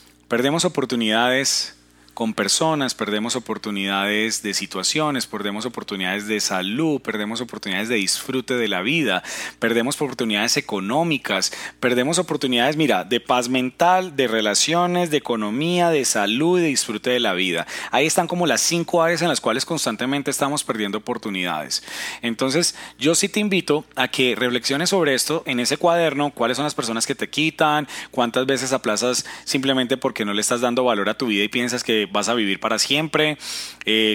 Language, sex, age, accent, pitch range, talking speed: Spanish, male, 30-49, Colombian, 120-170 Hz, 165 wpm